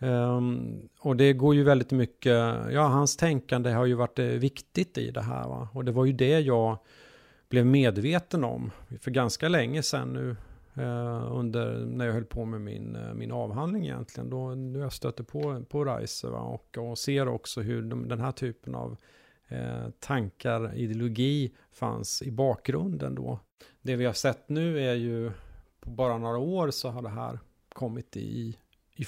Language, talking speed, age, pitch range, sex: Swedish, 180 wpm, 40-59, 115-135 Hz, male